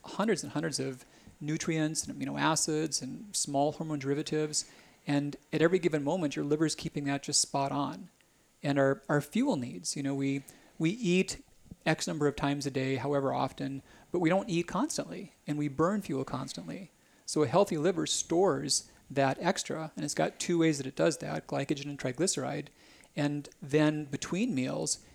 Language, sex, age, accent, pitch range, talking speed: English, male, 40-59, American, 140-165 Hz, 180 wpm